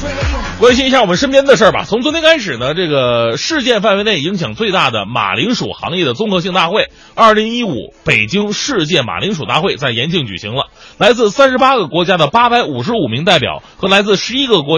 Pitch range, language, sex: 155-225 Hz, Chinese, male